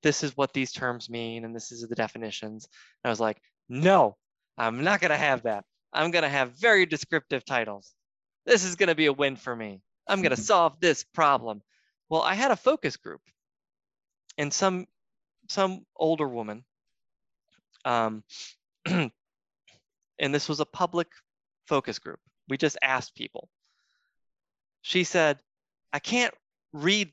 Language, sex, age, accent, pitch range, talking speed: English, male, 20-39, American, 120-175 Hz, 150 wpm